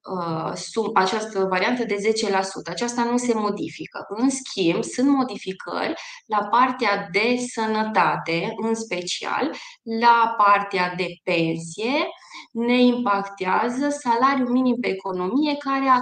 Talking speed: 110 wpm